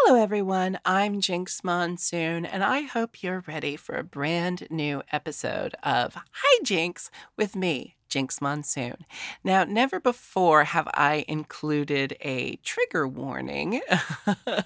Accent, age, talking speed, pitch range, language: American, 40-59, 125 wpm, 145-220 Hz, English